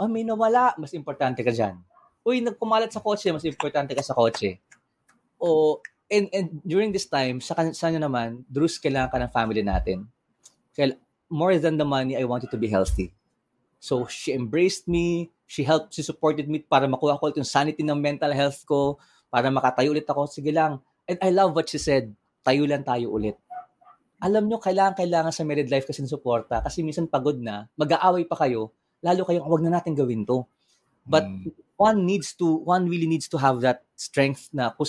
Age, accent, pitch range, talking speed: 20-39, native, 130-175 Hz, 195 wpm